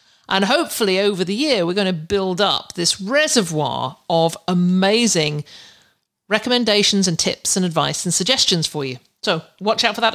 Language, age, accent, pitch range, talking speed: English, 50-69, British, 165-215 Hz, 165 wpm